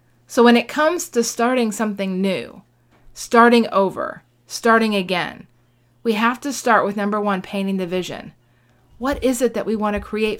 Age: 30-49